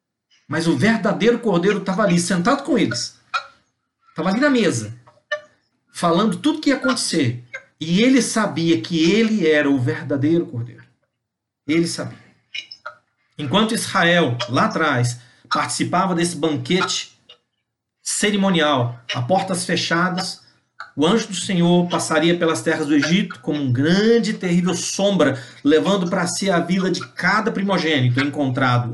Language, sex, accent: Portuguese, male, Brazilian